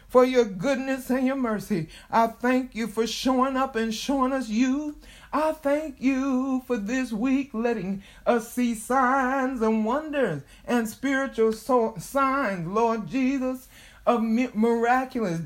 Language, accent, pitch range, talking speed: English, American, 220-260 Hz, 135 wpm